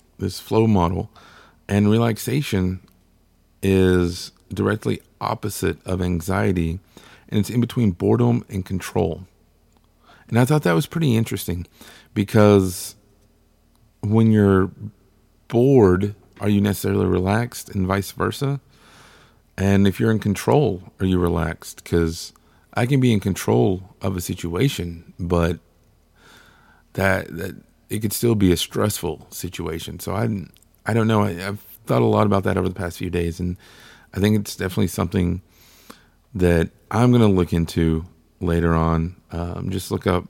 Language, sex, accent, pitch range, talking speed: English, male, American, 85-110 Hz, 145 wpm